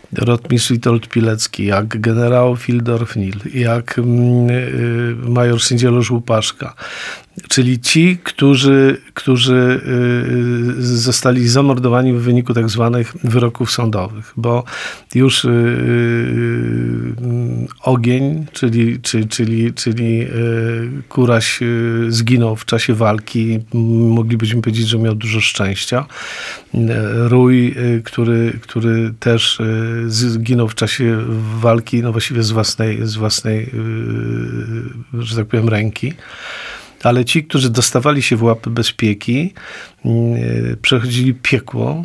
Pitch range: 115-135 Hz